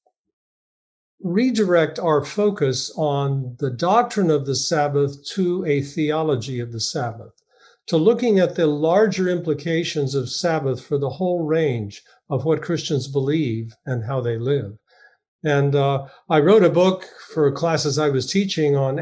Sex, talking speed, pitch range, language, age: male, 150 wpm, 140-170 Hz, English, 50-69